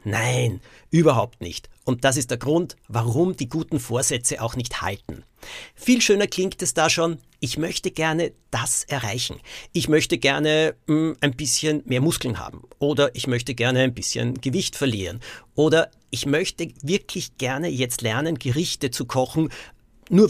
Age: 50-69